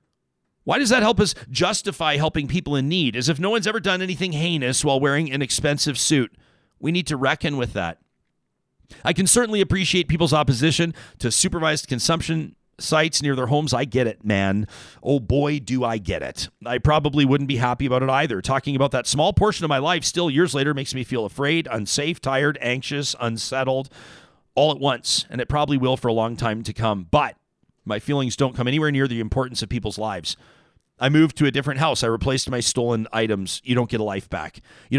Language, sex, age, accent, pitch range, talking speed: English, male, 40-59, American, 120-155 Hz, 210 wpm